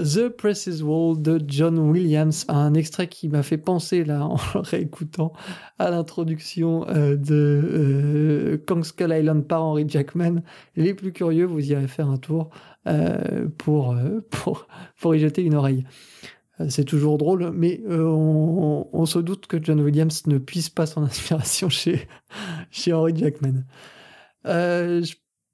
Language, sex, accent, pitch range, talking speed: French, male, French, 150-175 Hz, 160 wpm